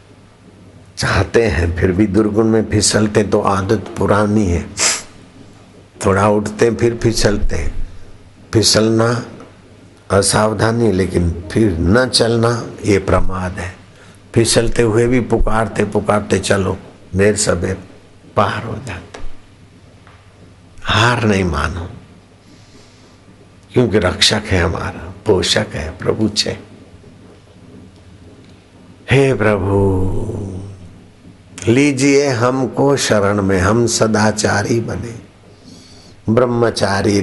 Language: Hindi